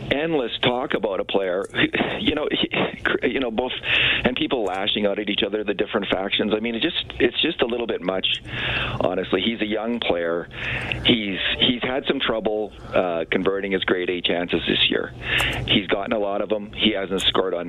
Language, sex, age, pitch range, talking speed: English, male, 40-59, 95-120 Hz, 200 wpm